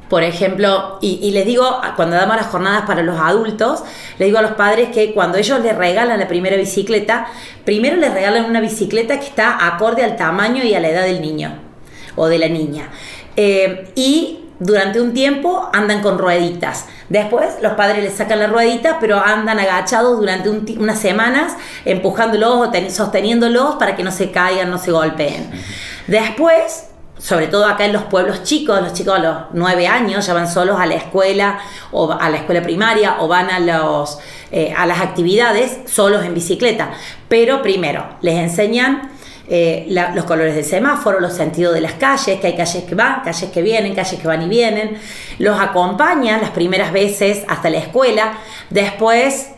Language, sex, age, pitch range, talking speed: Spanish, female, 30-49, 180-230 Hz, 185 wpm